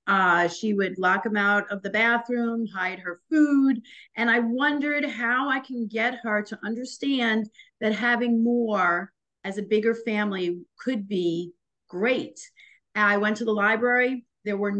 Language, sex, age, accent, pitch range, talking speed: English, female, 50-69, American, 195-240 Hz, 160 wpm